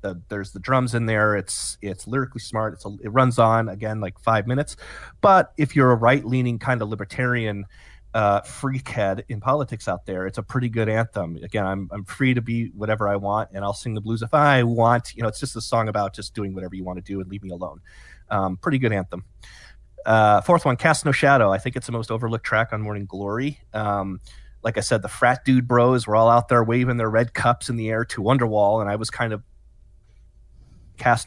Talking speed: 230 wpm